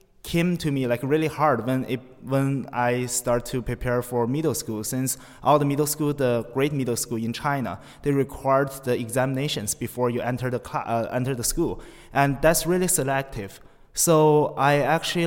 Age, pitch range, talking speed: 20-39, 125-145 Hz, 180 wpm